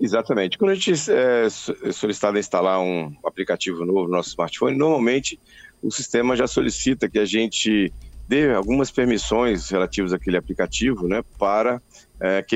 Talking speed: 145 wpm